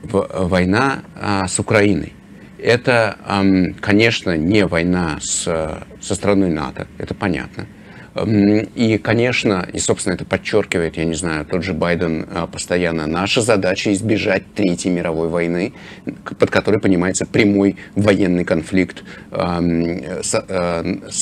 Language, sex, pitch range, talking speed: English, male, 90-110 Hz, 125 wpm